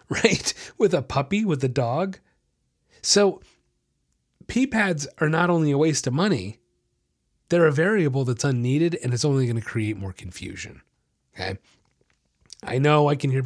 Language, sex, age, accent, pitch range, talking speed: English, male, 30-49, American, 125-175 Hz, 160 wpm